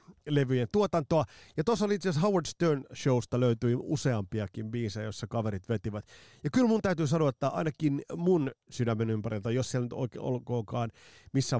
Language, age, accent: Finnish, 30-49, native